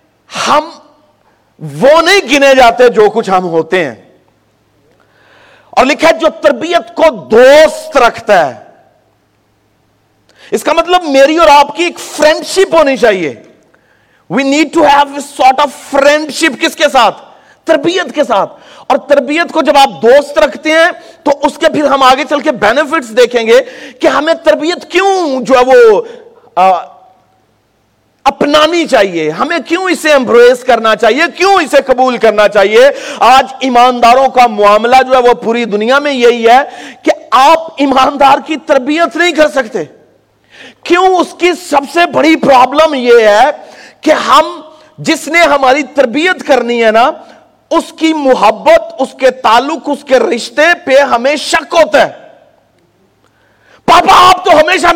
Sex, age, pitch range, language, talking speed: male, 50-69, 255-325 Hz, Urdu, 155 wpm